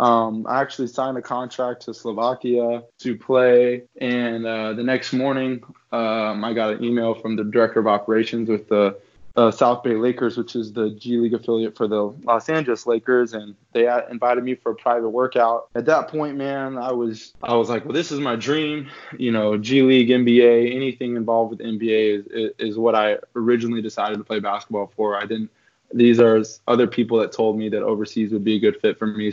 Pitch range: 110-125 Hz